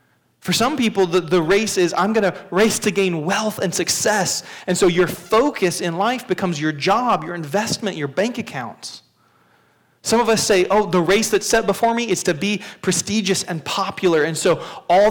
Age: 30-49